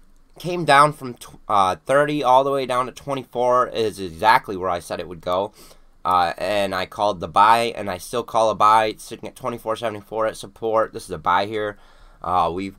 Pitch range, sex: 105-150 Hz, male